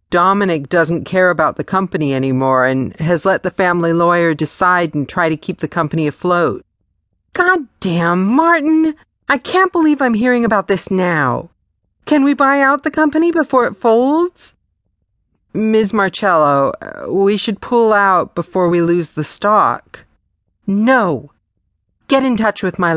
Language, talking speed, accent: English, 150 wpm, American